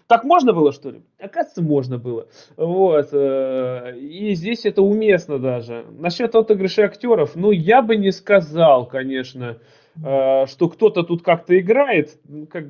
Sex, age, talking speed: male, 20-39, 135 wpm